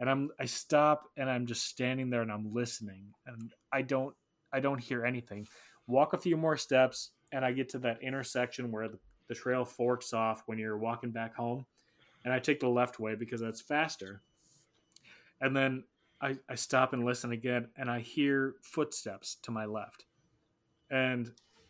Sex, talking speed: male, 185 wpm